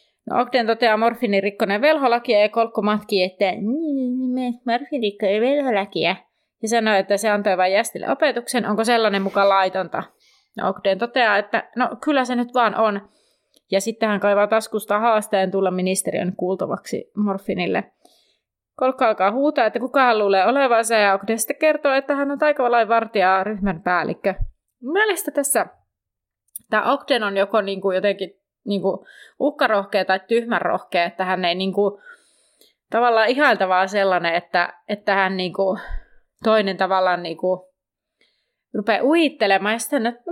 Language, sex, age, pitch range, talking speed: Finnish, female, 30-49, 195-240 Hz, 140 wpm